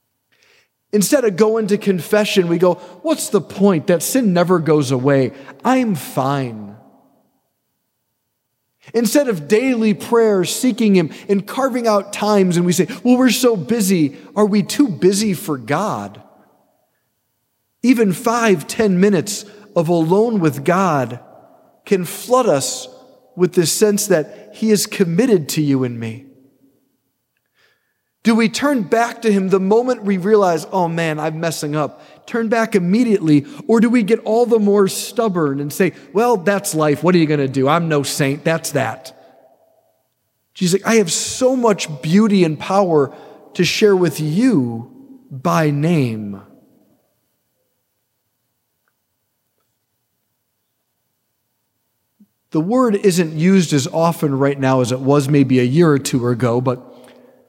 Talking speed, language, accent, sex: 145 wpm, English, American, male